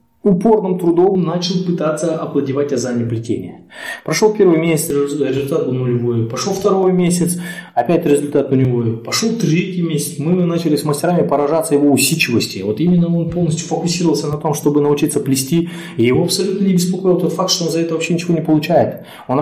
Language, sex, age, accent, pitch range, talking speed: Russian, male, 20-39, native, 125-170 Hz, 170 wpm